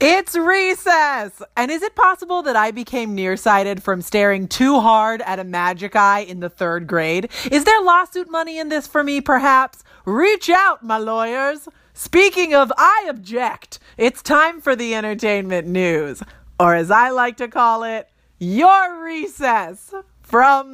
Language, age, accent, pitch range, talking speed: English, 30-49, American, 195-290 Hz, 160 wpm